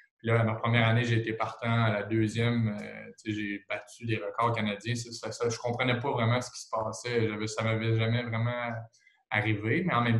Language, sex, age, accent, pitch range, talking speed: French, male, 20-39, Canadian, 110-120 Hz, 220 wpm